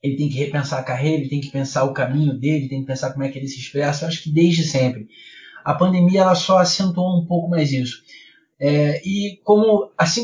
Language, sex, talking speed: Portuguese, male, 230 wpm